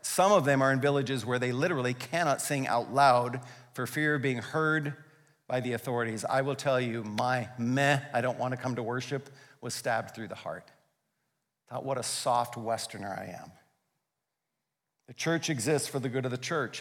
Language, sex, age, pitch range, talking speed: English, male, 50-69, 135-180 Hz, 200 wpm